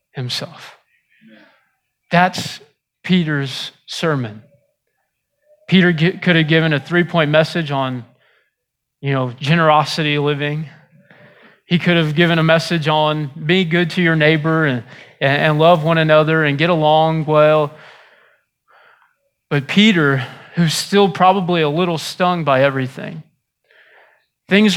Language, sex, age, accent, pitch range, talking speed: English, male, 20-39, American, 155-195 Hz, 120 wpm